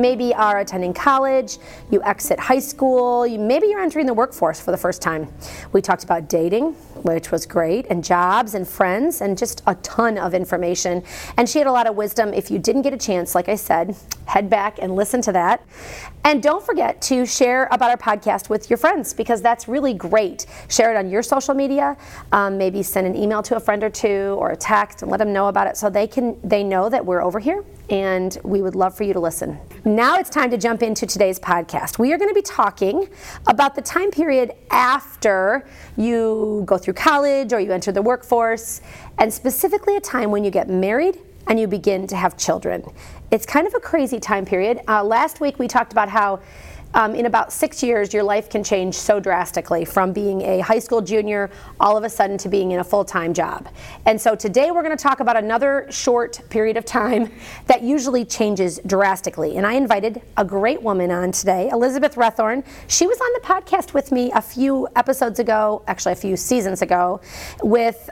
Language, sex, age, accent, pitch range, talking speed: English, female, 40-59, American, 195-255 Hz, 210 wpm